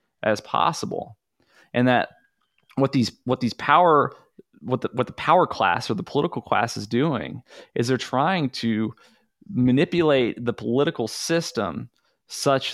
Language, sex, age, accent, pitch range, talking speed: English, male, 20-39, American, 115-145 Hz, 140 wpm